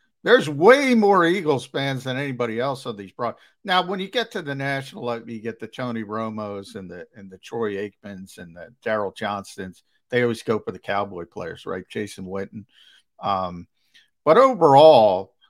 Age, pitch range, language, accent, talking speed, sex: 50-69, 100-145 Hz, English, American, 180 wpm, male